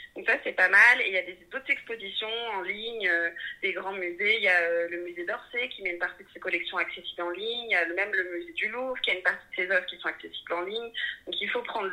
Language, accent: French, French